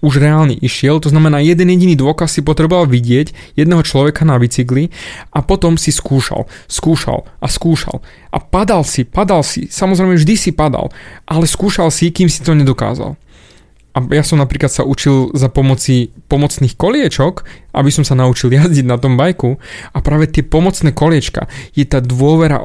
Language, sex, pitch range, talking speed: Slovak, male, 135-165 Hz, 170 wpm